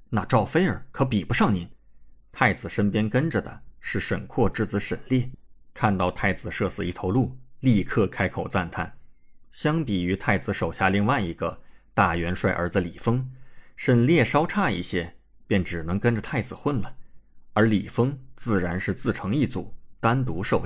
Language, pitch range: Chinese, 95-125 Hz